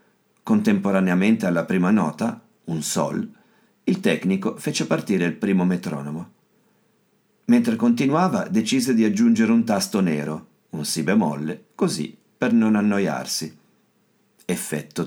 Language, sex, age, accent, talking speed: Italian, male, 50-69, native, 115 wpm